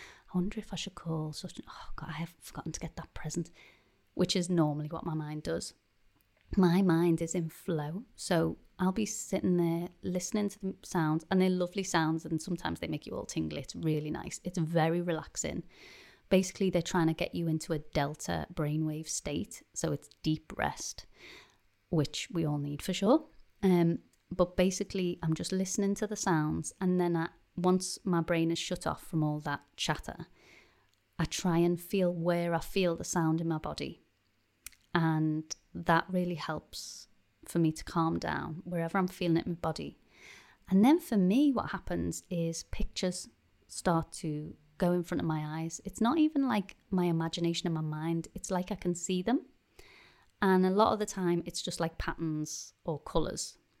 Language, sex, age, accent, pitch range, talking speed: English, female, 30-49, British, 160-185 Hz, 190 wpm